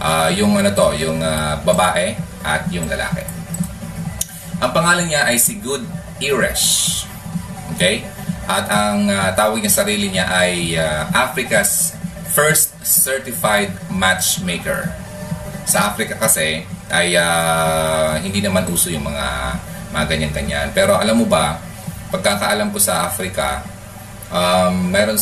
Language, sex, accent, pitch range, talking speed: Filipino, male, native, 85-110 Hz, 125 wpm